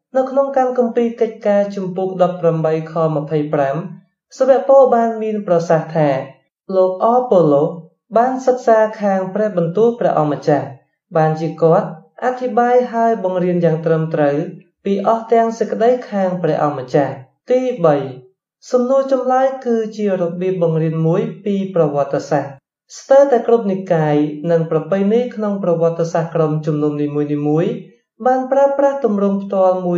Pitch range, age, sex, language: 160-225 Hz, 20-39, male, English